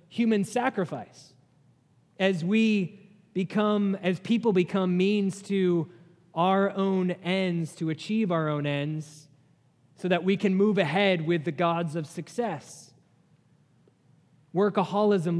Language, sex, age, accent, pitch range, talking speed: English, male, 20-39, American, 145-185 Hz, 115 wpm